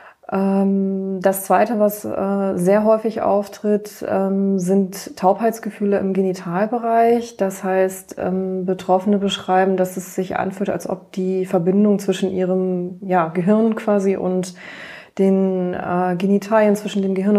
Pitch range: 185-200 Hz